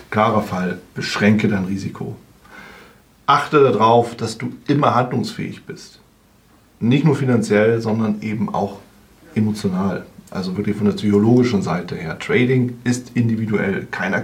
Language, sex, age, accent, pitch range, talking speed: German, male, 40-59, German, 105-125 Hz, 125 wpm